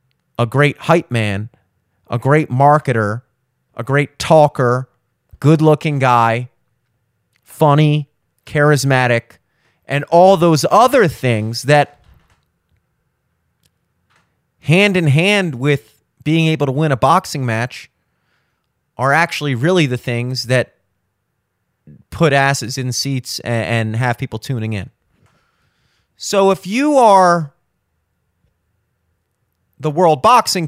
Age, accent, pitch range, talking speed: 30-49, American, 115-160 Hz, 100 wpm